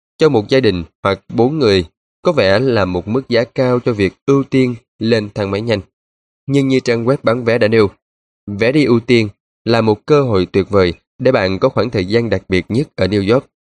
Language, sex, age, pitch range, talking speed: Vietnamese, male, 20-39, 95-120 Hz, 230 wpm